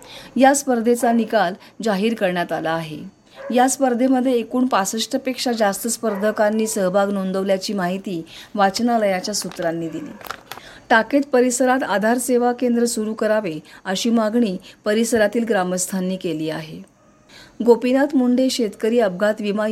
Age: 40-59